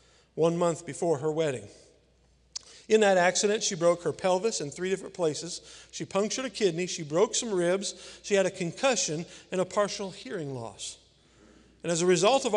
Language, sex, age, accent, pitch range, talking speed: English, male, 50-69, American, 150-200 Hz, 180 wpm